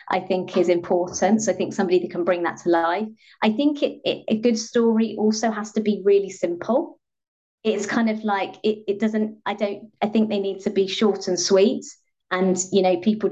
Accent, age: British, 30-49